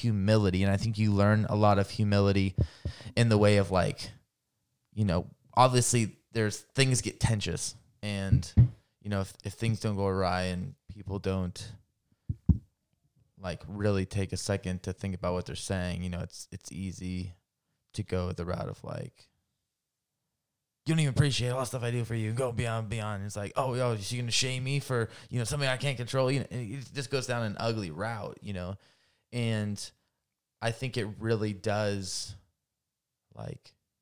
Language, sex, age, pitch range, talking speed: English, male, 20-39, 95-115 Hz, 185 wpm